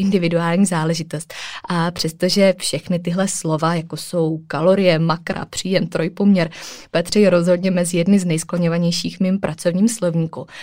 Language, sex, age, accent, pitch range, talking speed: Czech, female, 20-39, native, 160-180 Hz, 125 wpm